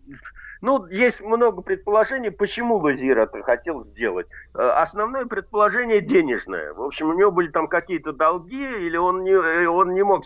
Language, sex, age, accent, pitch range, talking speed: Russian, male, 50-69, native, 170-235 Hz, 150 wpm